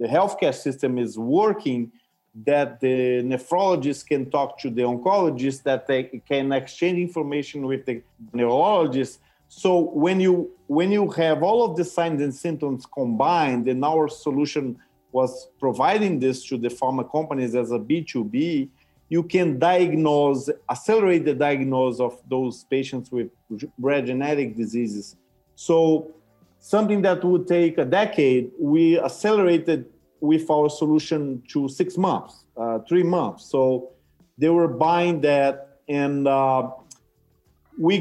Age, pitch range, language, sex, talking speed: 50-69, 130-170 Hz, English, male, 135 wpm